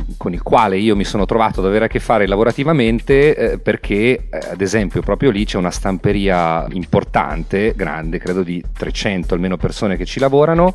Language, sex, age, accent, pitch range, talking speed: Italian, male, 40-59, native, 90-120 Hz, 185 wpm